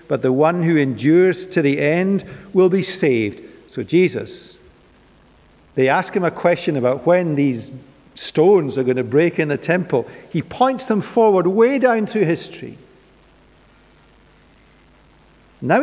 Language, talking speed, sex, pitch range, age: English, 145 wpm, male, 135-170 Hz, 50-69